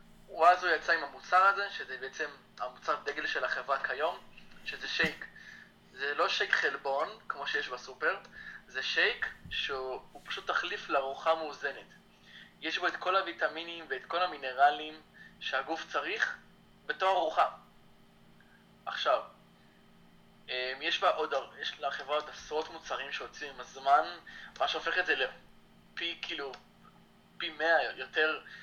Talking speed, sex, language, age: 130 wpm, male, Hebrew, 20-39